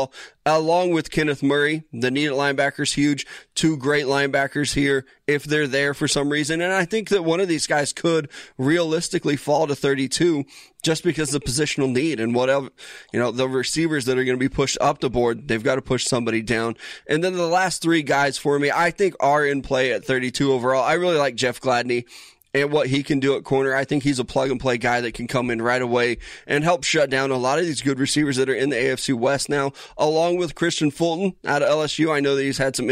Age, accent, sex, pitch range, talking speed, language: 20-39, American, male, 130-150 Hz, 230 wpm, English